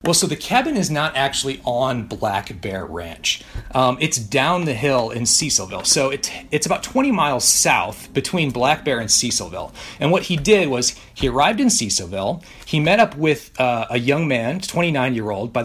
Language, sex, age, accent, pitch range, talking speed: English, male, 40-59, American, 120-170 Hz, 185 wpm